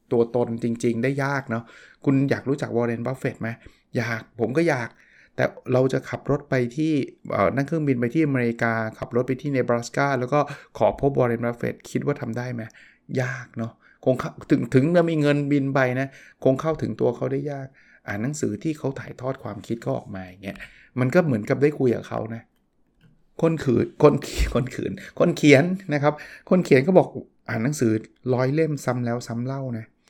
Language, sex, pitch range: English, male, 120-145 Hz